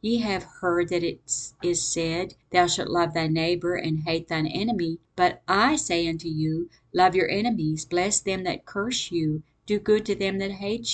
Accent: American